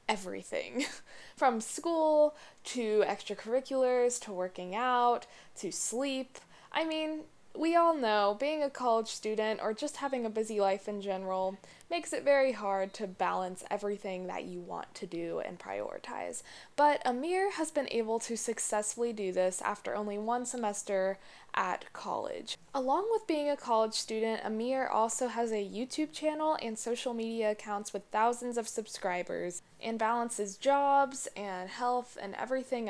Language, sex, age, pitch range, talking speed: English, female, 10-29, 205-275 Hz, 150 wpm